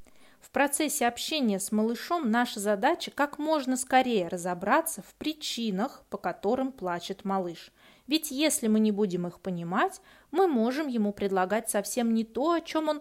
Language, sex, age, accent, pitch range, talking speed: Russian, female, 20-39, native, 200-270 Hz, 155 wpm